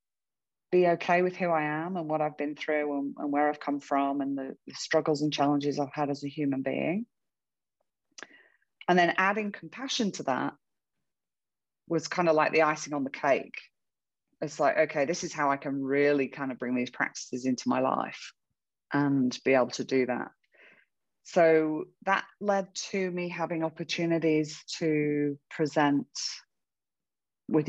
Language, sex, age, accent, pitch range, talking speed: English, female, 30-49, British, 145-175 Hz, 165 wpm